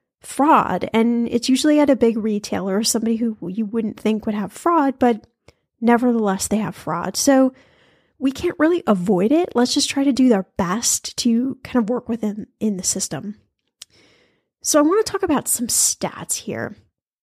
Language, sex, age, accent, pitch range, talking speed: English, female, 10-29, American, 210-260 Hz, 180 wpm